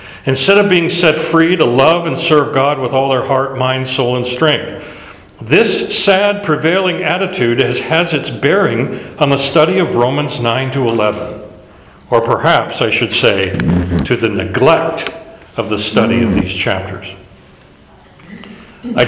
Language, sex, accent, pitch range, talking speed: English, male, American, 130-175 Hz, 150 wpm